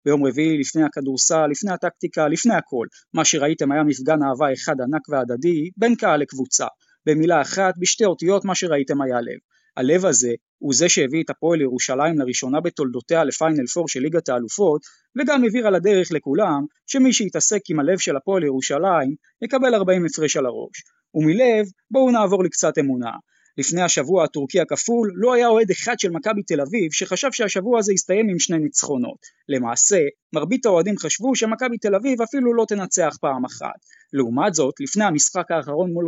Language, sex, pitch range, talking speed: Hebrew, male, 150-225 Hz, 170 wpm